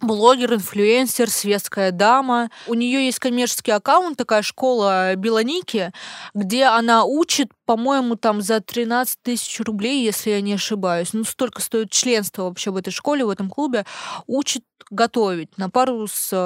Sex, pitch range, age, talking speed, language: female, 200-250 Hz, 20-39, 150 wpm, Russian